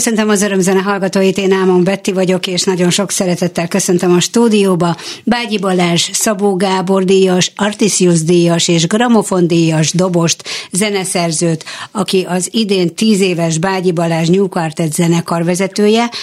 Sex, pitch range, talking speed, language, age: female, 170-195 Hz, 135 wpm, Hungarian, 60-79